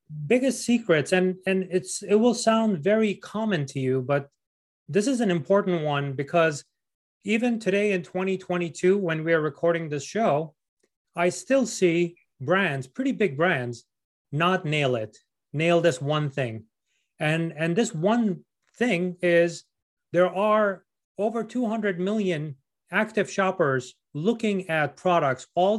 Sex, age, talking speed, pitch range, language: male, 30-49, 140 wpm, 145-190 Hz, English